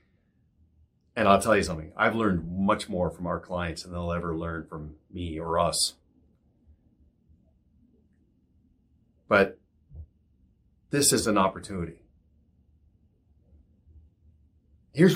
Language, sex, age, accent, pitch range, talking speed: English, male, 40-59, American, 80-100 Hz, 105 wpm